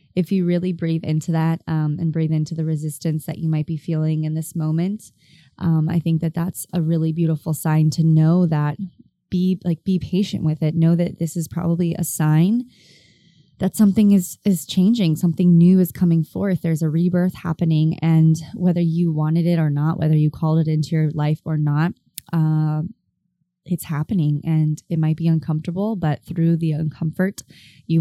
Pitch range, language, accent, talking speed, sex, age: 155-175 Hz, English, American, 190 wpm, female, 20-39